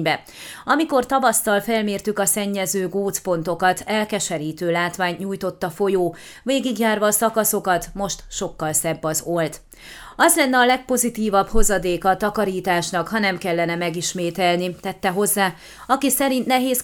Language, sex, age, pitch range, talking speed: Hungarian, female, 30-49, 175-220 Hz, 125 wpm